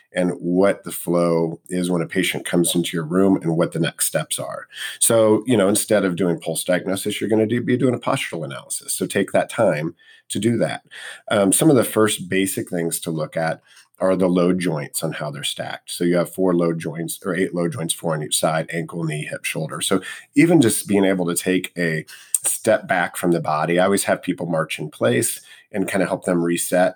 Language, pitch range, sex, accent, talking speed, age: English, 85-110 Hz, male, American, 225 wpm, 40-59